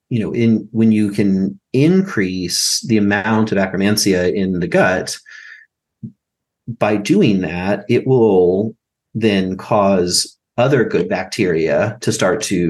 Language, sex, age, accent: English, male, 30-49, American